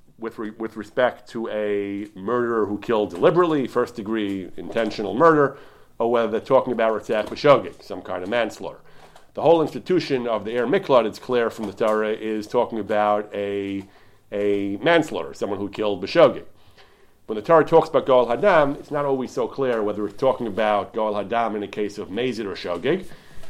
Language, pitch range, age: English, 105-135 Hz, 40-59